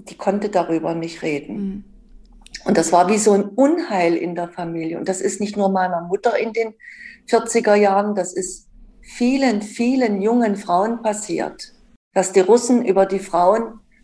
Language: German